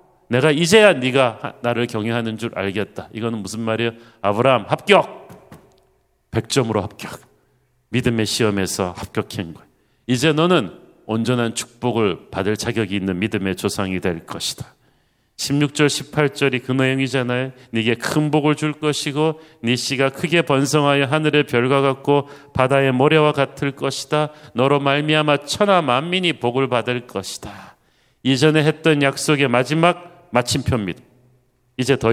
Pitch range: 115-145 Hz